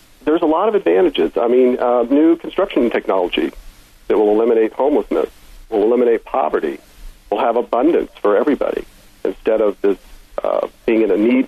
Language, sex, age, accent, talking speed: English, male, 50-69, American, 160 wpm